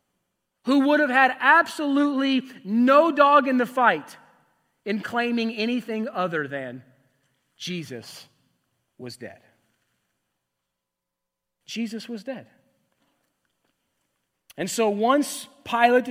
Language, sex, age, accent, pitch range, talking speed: English, male, 30-49, American, 160-230 Hz, 95 wpm